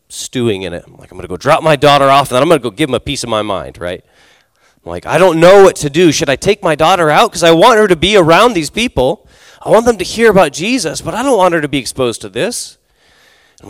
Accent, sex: American, male